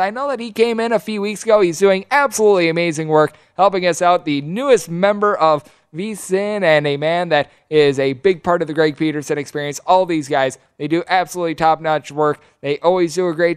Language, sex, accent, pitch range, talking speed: English, male, American, 155-200 Hz, 215 wpm